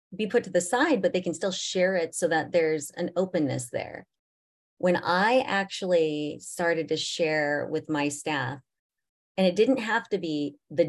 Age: 30-49